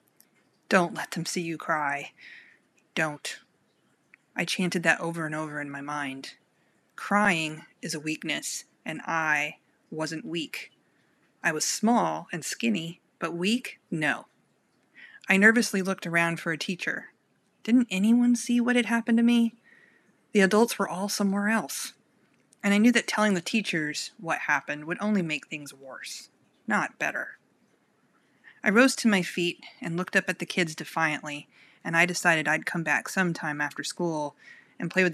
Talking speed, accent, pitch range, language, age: 160 wpm, American, 155-205 Hz, English, 30-49